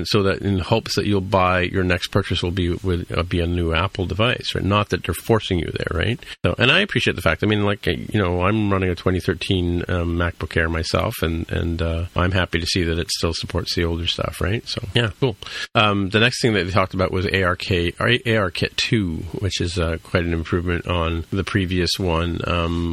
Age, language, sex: 40-59, English, male